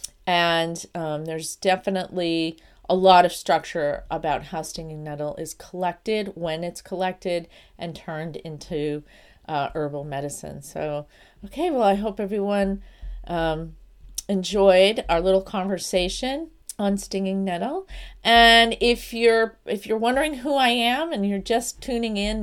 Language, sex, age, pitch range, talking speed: English, female, 40-59, 160-200 Hz, 135 wpm